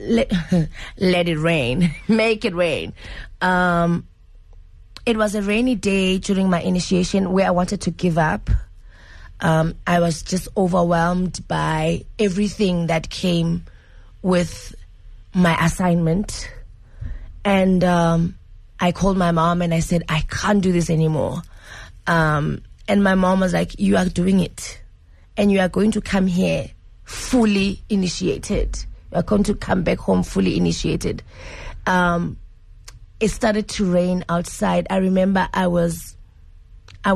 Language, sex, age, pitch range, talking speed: English, female, 20-39, 120-190 Hz, 140 wpm